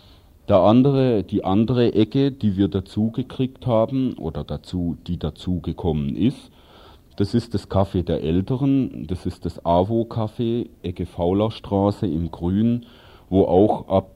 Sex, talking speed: male, 145 wpm